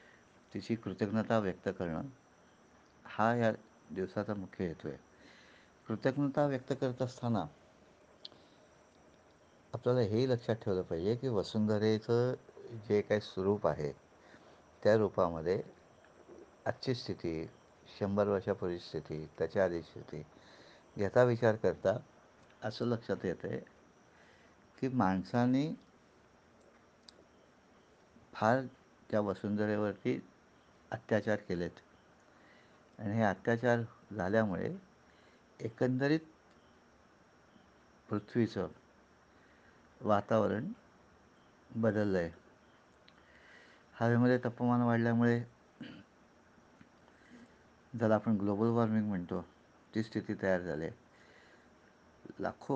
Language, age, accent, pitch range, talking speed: Marathi, 60-79, native, 95-120 Hz, 70 wpm